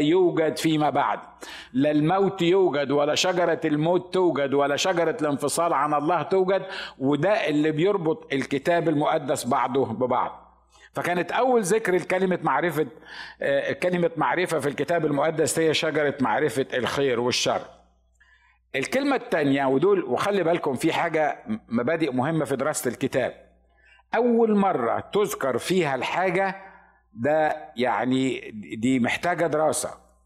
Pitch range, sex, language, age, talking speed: 140-180 Hz, male, Arabic, 50-69, 115 wpm